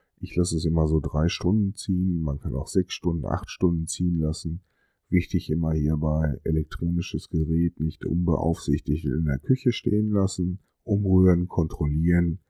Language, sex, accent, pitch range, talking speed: German, male, German, 75-90 Hz, 150 wpm